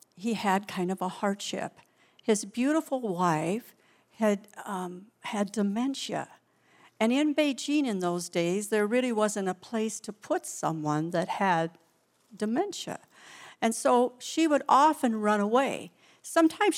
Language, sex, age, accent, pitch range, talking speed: English, female, 60-79, American, 185-240 Hz, 135 wpm